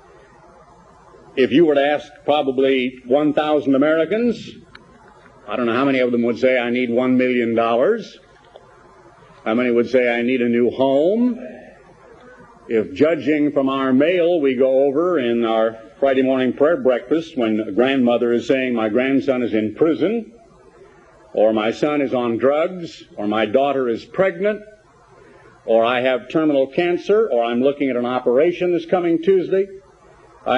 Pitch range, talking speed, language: 125-175 Hz, 155 wpm, English